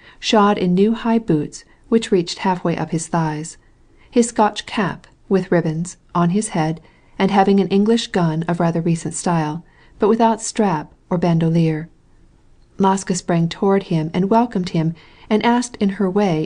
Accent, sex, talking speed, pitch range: American, female, 165 wpm, 165-200 Hz